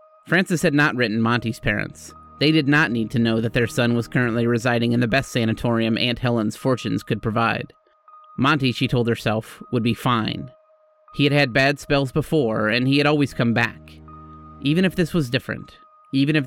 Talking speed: 195 wpm